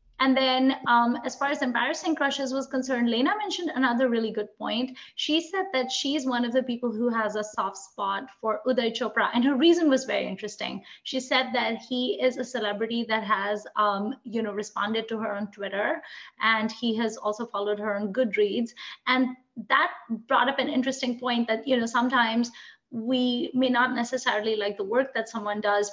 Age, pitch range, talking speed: 20-39, 215-260 Hz, 195 wpm